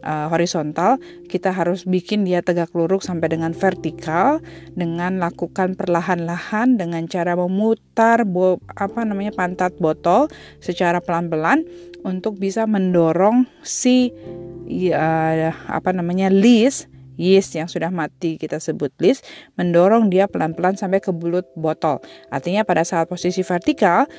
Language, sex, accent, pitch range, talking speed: Indonesian, female, native, 165-220 Hz, 125 wpm